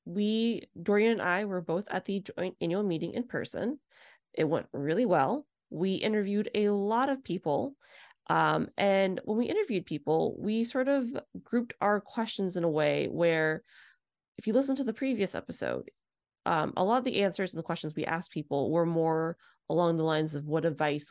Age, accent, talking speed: 30-49, American, 190 wpm